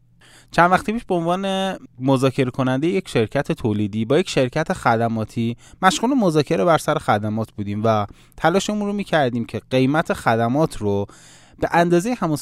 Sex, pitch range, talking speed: male, 115-160 Hz, 150 wpm